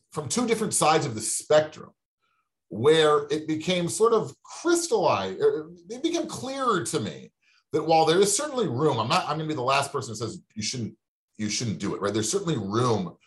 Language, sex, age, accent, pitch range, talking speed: English, male, 30-49, American, 115-185 Hz, 205 wpm